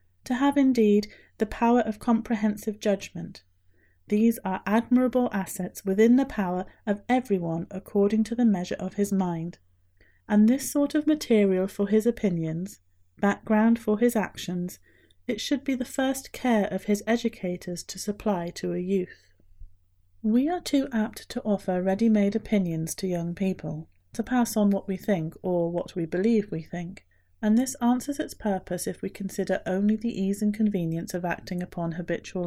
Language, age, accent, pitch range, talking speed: English, 30-49, British, 175-225 Hz, 165 wpm